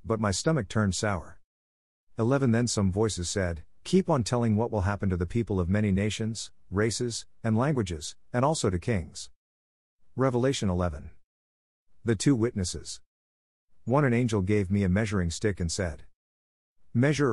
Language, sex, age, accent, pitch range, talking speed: English, male, 50-69, American, 90-115 Hz, 155 wpm